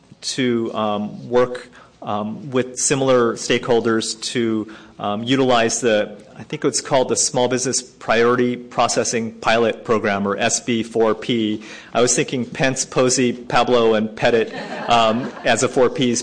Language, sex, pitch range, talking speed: English, male, 110-125 Hz, 135 wpm